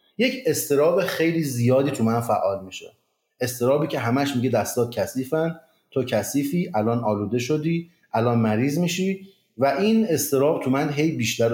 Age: 30-49